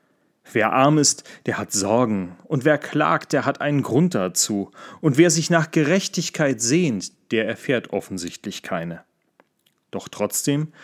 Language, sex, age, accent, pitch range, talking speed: German, male, 30-49, German, 105-145 Hz, 145 wpm